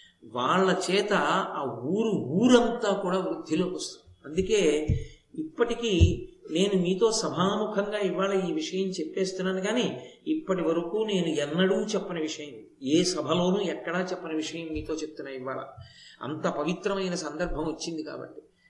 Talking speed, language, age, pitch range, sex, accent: 120 wpm, Telugu, 50-69, 165-205 Hz, male, native